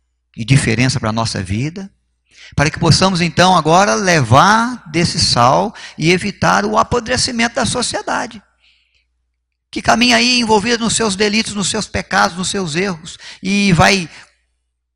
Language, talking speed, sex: Portuguese, 140 wpm, male